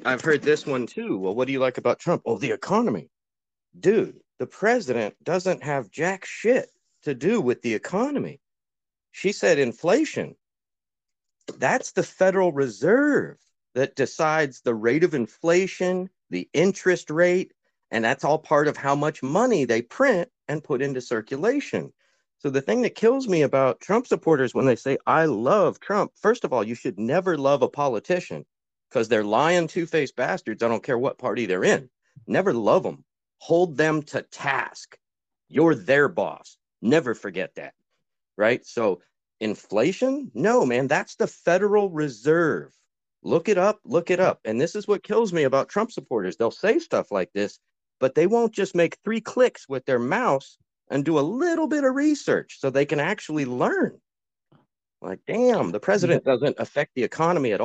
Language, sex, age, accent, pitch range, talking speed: English, male, 40-59, American, 140-195 Hz, 175 wpm